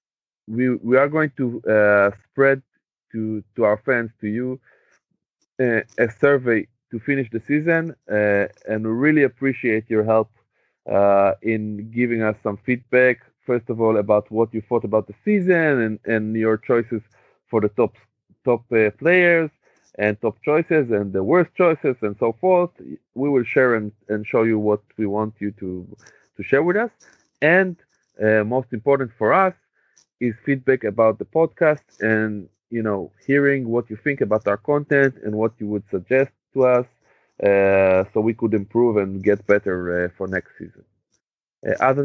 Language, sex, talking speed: Hebrew, male, 175 wpm